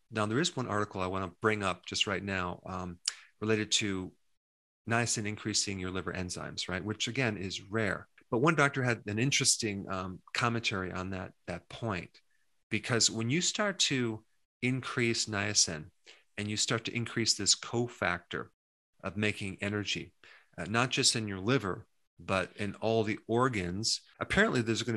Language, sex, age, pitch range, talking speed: English, male, 40-59, 95-115 Hz, 165 wpm